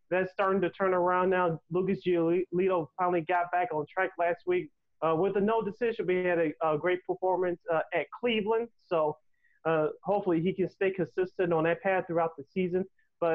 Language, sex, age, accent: English, male, 30-49, American